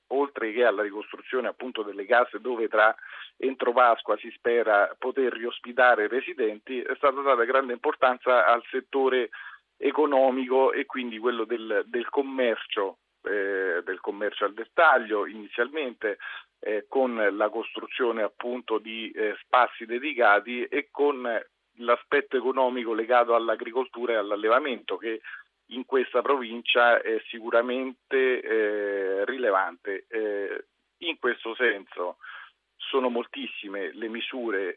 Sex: male